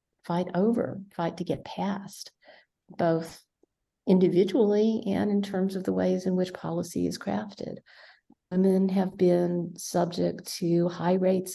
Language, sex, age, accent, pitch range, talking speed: English, female, 50-69, American, 165-190 Hz, 135 wpm